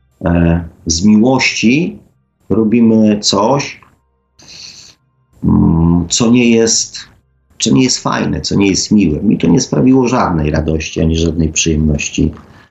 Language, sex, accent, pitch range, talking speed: Polish, male, native, 80-110 Hz, 115 wpm